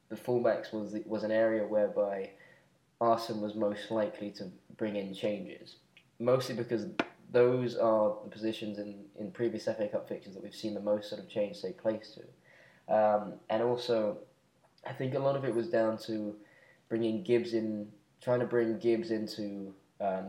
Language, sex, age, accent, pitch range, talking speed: English, male, 10-29, British, 105-115 Hz, 175 wpm